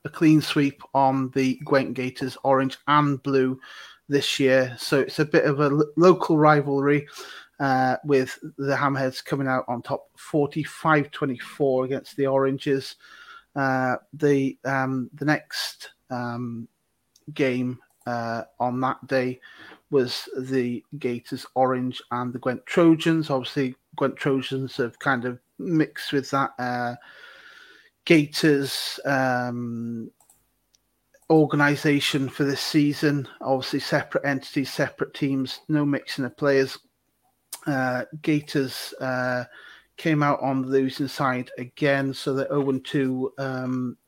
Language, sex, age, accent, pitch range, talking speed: English, male, 30-49, British, 130-145 Hz, 125 wpm